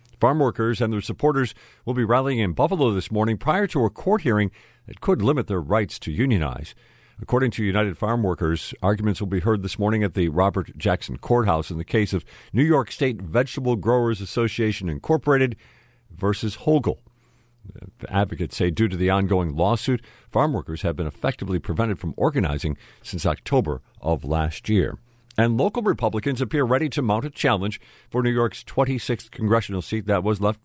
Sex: male